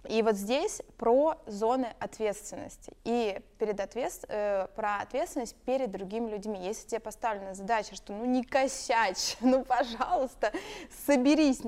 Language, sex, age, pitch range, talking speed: Russian, female, 20-39, 195-260 Hz, 135 wpm